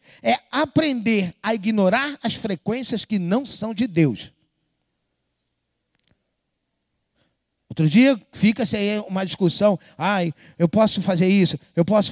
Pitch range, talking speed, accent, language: 170-225 Hz, 120 wpm, Brazilian, Portuguese